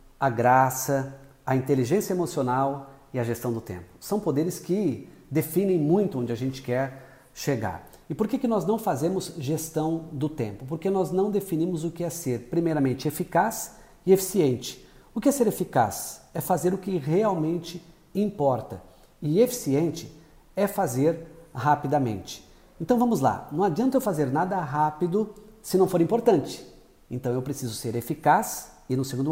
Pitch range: 125-185 Hz